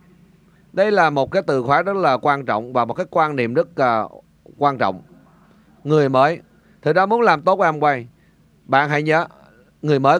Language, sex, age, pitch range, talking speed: Vietnamese, male, 30-49, 125-175 Hz, 200 wpm